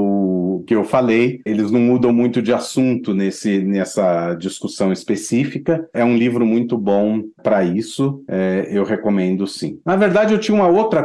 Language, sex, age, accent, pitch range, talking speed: Portuguese, male, 40-59, Brazilian, 100-125 Hz, 170 wpm